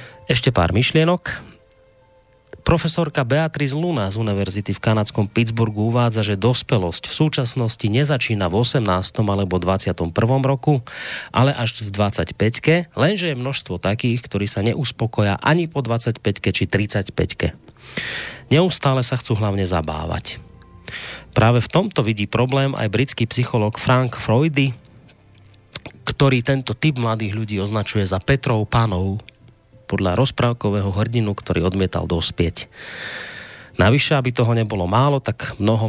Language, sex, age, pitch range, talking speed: Slovak, male, 30-49, 95-125 Hz, 125 wpm